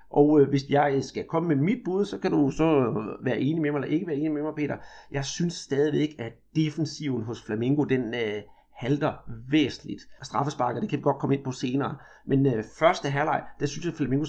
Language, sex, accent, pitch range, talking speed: Danish, male, native, 130-160 Hz, 225 wpm